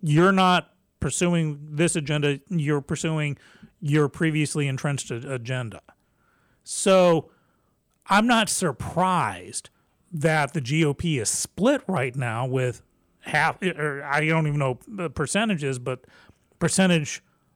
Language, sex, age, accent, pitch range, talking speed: English, male, 40-59, American, 140-185 Hz, 115 wpm